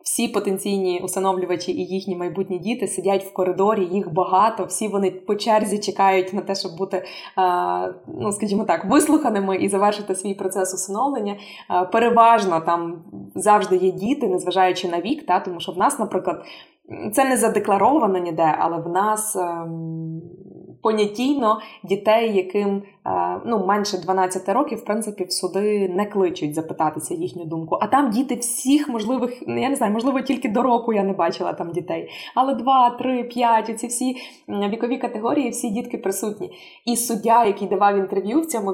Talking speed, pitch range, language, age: 160 wpm, 185-230 Hz, Ukrainian, 20-39